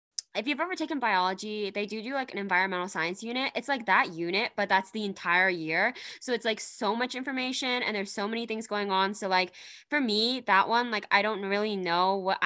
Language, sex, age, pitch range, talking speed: English, female, 10-29, 180-240 Hz, 225 wpm